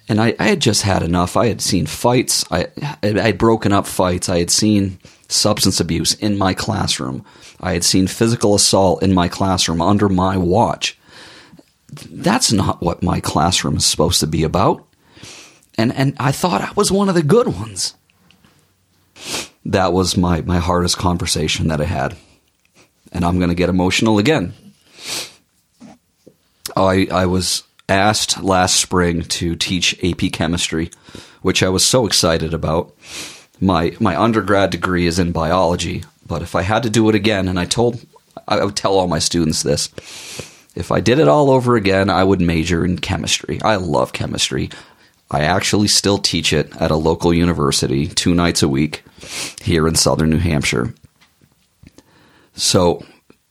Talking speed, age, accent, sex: 165 wpm, 40-59, American, male